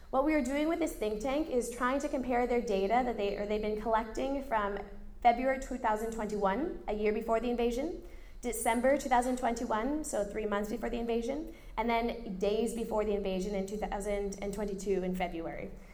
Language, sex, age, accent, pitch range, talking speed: English, female, 20-39, American, 205-250 Hz, 175 wpm